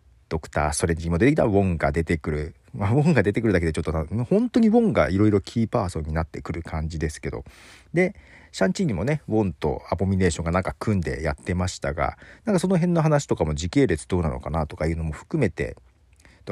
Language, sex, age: Japanese, male, 40-59